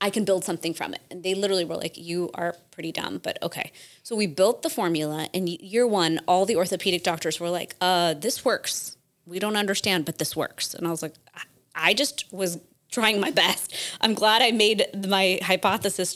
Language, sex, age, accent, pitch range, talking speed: English, female, 20-39, American, 170-210 Hz, 210 wpm